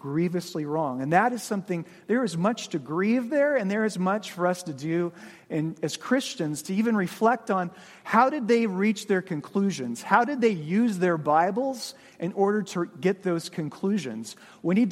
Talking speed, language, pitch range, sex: 190 wpm, English, 160-210 Hz, male